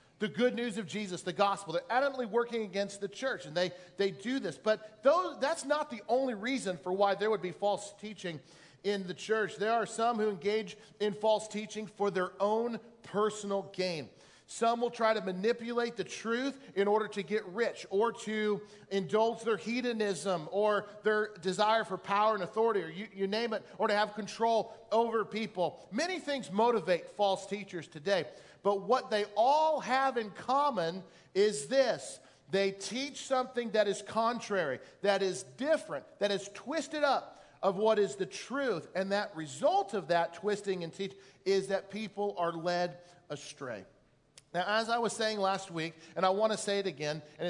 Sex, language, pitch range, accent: male, English, 195-235 Hz, American